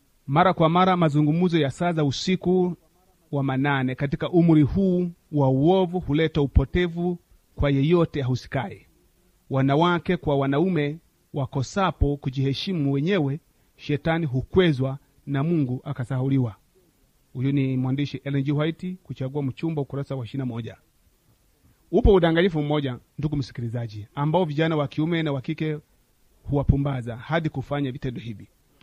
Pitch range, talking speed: 135-180 Hz, 115 wpm